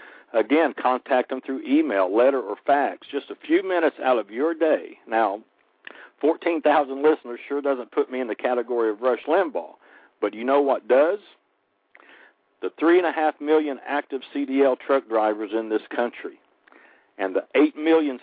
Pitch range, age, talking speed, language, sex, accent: 125-155 Hz, 60-79, 160 wpm, English, male, American